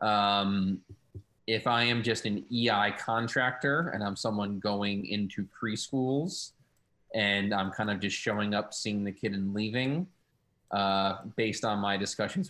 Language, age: English, 30-49